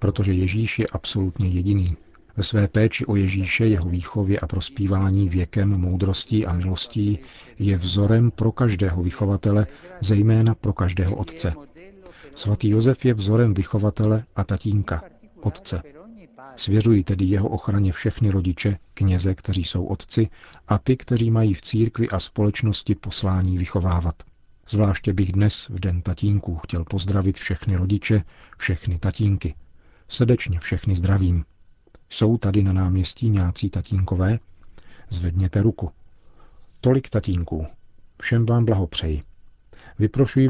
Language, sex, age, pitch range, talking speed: Czech, male, 40-59, 90-110 Hz, 125 wpm